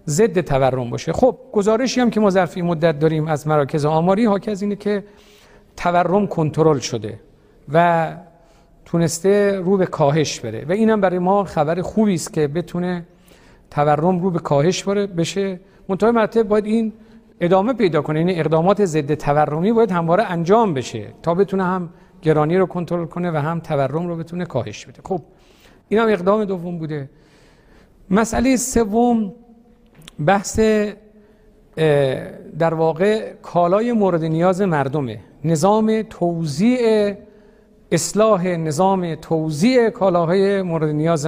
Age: 50-69